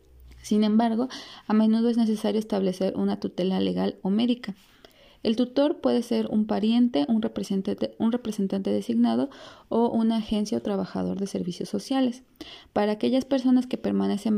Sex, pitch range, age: female, 185-235 Hz, 30-49